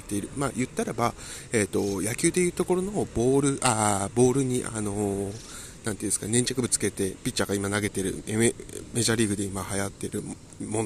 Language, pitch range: Japanese, 105-155 Hz